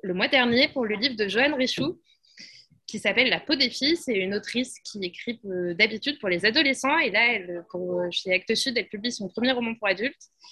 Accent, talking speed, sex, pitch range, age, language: French, 220 wpm, female, 185-235 Hz, 20-39, French